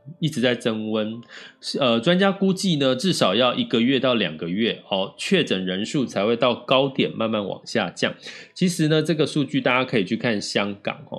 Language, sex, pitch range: Chinese, male, 105-150 Hz